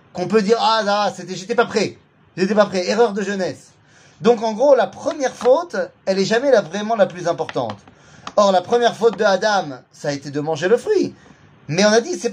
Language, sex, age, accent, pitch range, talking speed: French, male, 30-49, French, 150-210 Hz, 230 wpm